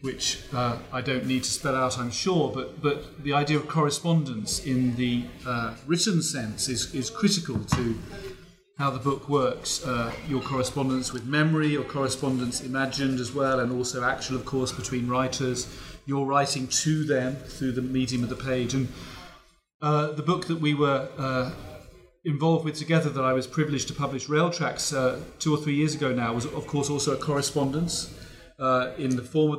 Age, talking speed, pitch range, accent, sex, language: 40-59, 190 wpm, 130-150 Hz, British, male, English